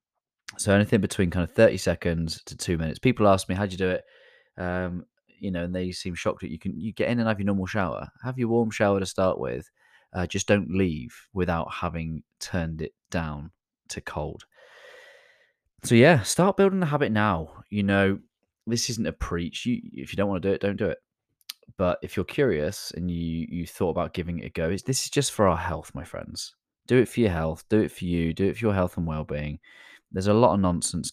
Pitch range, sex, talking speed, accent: 85-100 Hz, male, 230 wpm, British